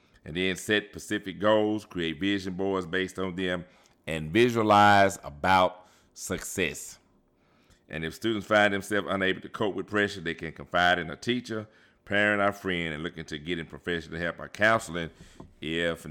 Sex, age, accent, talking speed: male, 40-59, American, 160 wpm